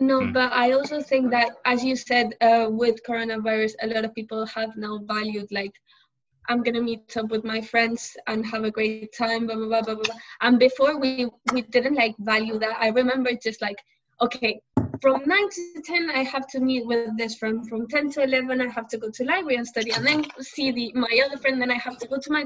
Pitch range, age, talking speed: 220-255 Hz, 10-29, 230 wpm